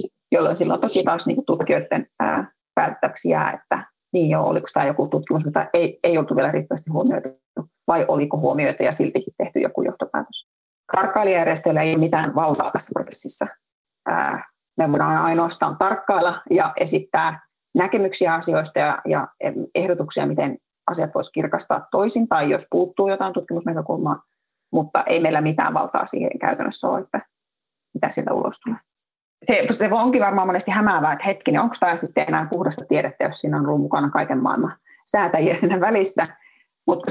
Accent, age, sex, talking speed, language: native, 30-49, female, 155 wpm, Finnish